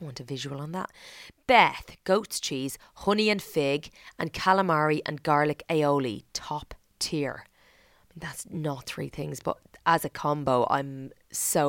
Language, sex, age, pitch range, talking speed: English, female, 30-49, 140-185 Hz, 145 wpm